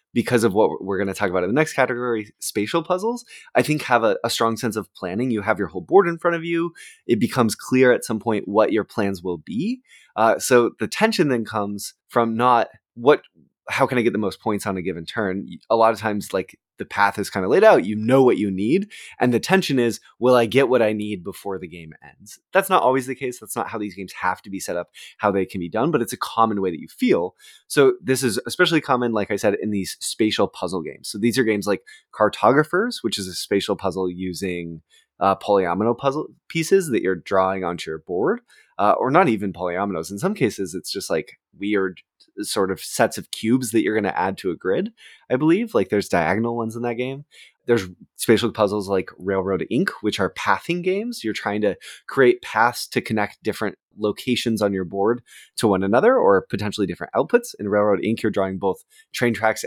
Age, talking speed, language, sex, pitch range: 20-39, 230 wpm, English, male, 100-135 Hz